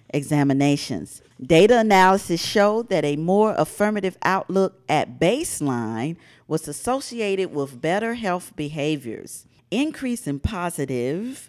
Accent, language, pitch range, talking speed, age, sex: American, English, 140-195 Hz, 105 wpm, 40-59, female